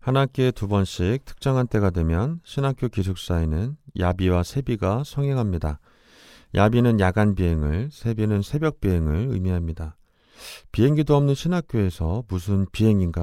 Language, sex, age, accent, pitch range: Korean, male, 40-59, native, 85-125 Hz